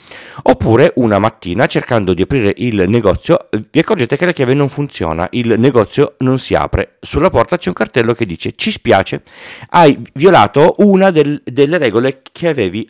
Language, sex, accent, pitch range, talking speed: Italian, male, native, 90-130 Hz, 170 wpm